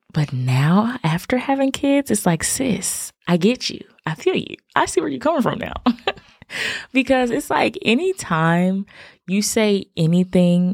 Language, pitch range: English, 145-215 Hz